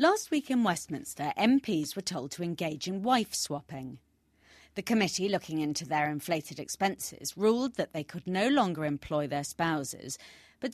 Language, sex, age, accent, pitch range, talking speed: English, female, 40-59, British, 145-210 Hz, 155 wpm